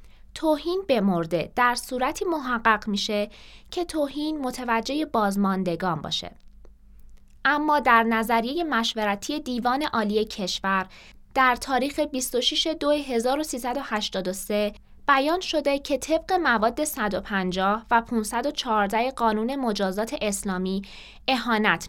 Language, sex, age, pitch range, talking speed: Persian, female, 20-39, 205-290 Hz, 95 wpm